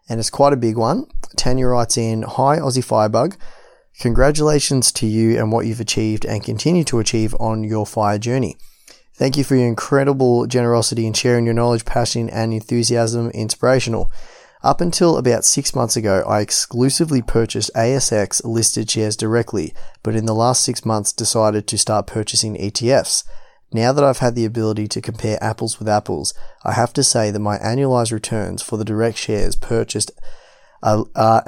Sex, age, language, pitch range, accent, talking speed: male, 20-39, English, 110-120 Hz, Australian, 170 wpm